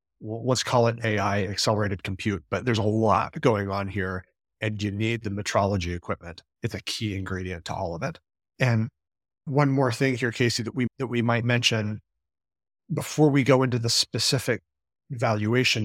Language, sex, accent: English, male, American